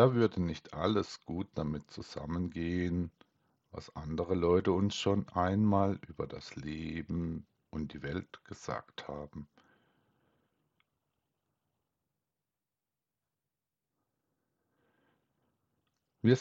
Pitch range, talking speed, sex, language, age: 85-110 Hz, 80 wpm, male, German, 50-69